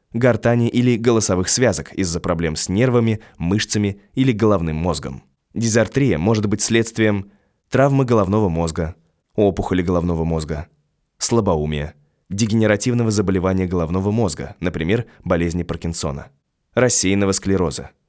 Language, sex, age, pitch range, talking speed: Russian, male, 20-39, 90-120 Hz, 105 wpm